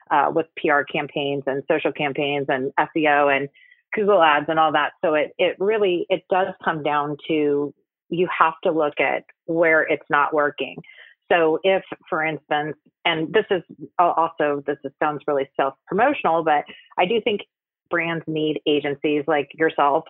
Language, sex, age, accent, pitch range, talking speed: English, female, 30-49, American, 150-175 Hz, 165 wpm